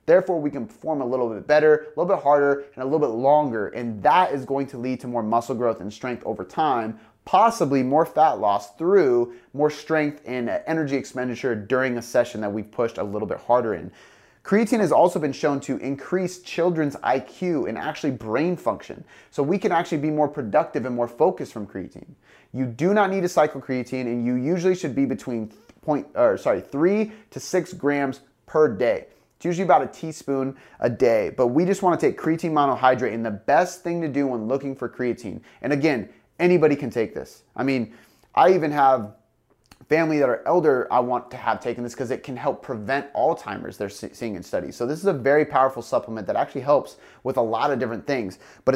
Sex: male